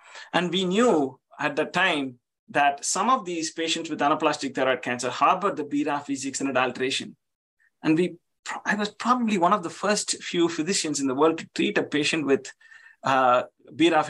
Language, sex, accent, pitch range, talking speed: English, male, Indian, 145-195 Hz, 185 wpm